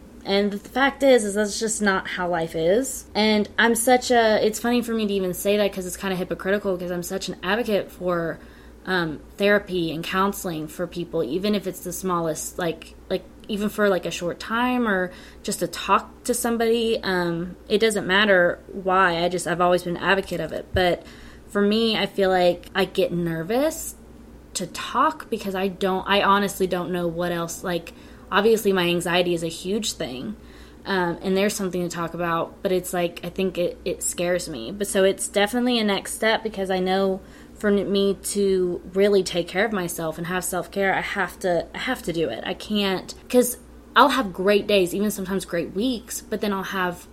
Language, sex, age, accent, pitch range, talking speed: English, female, 20-39, American, 175-205 Hz, 205 wpm